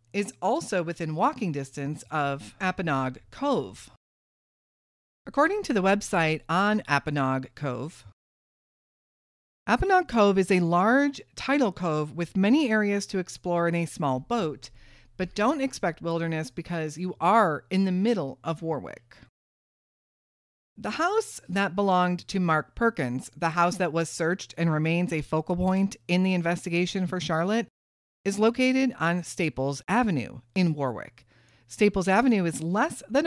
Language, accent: English, American